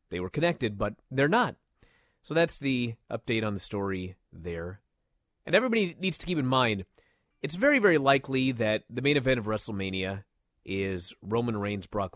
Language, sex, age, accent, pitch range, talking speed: English, male, 30-49, American, 105-155 Hz, 175 wpm